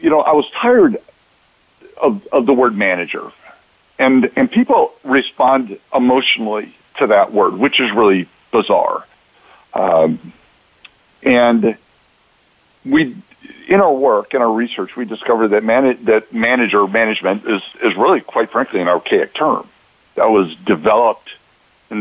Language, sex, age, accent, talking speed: English, male, 50-69, American, 135 wpm